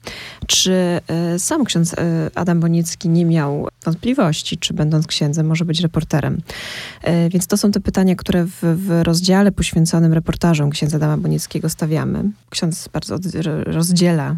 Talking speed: 135 wpm